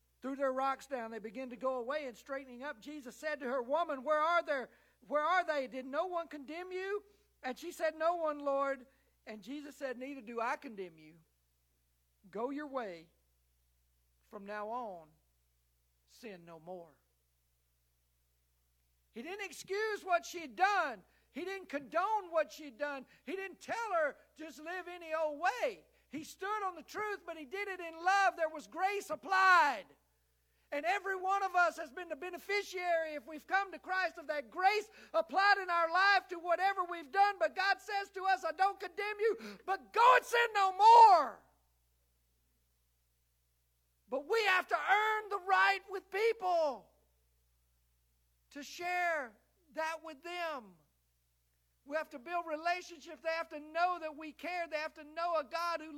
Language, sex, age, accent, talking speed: English, male, 50-69, American, 170 wpm